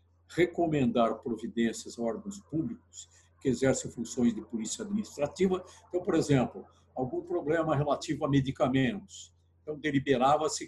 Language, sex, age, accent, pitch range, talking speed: Portuguese, male, 60-79, Brazilian, 120-185 Hz, 120 wpm